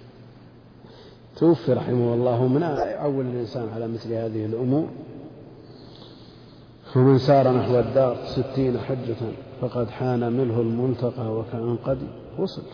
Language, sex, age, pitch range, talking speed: Arabic, male, 50-69, 120-135 Hz, 110 wpm